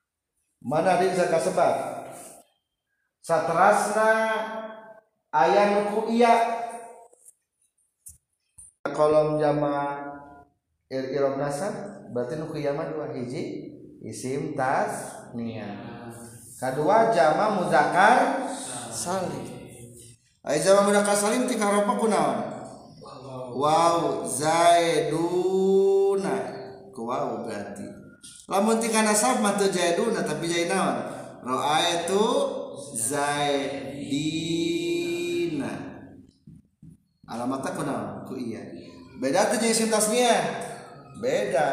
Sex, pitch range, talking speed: male, 135-205 Hz, 70 wpm